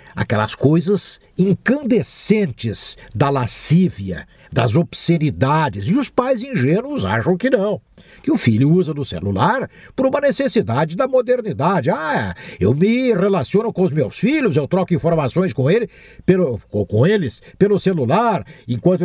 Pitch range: 155-215 Hz